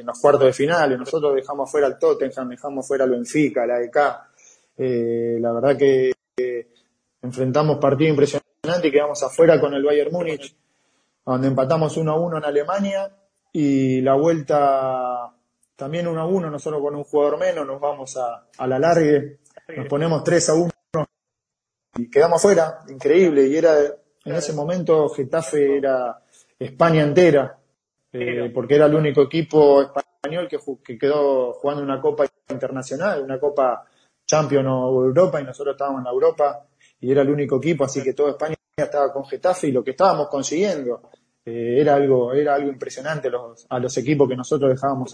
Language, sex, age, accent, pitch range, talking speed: Spanish, male, 20-39, Argentinian, 130-150 Hz, 170 wpm